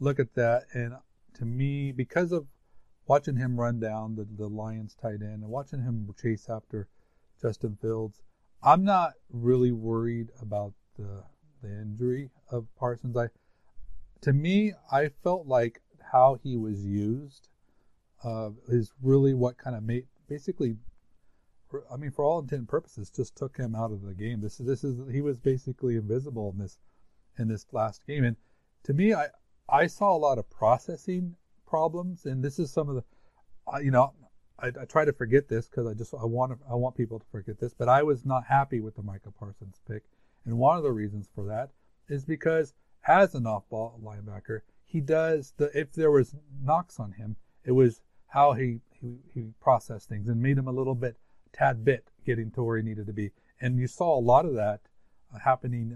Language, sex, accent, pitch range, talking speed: English, male, American, 110-135 Hz, 195 wpm